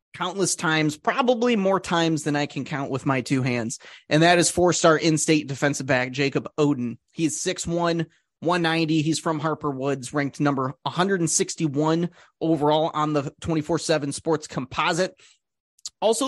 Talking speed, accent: 145 wpm, American